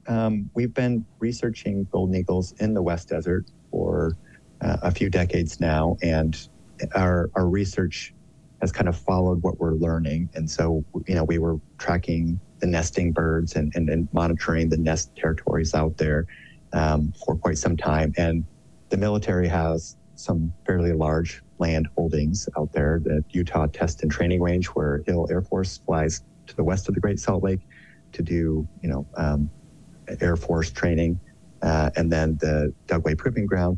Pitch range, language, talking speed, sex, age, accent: 80-90 Hz, English, 170 wpm, male, 30-49, American